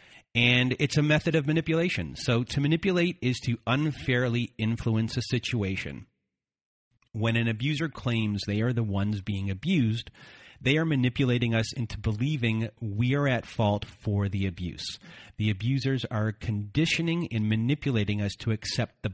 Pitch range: 105-125 Hz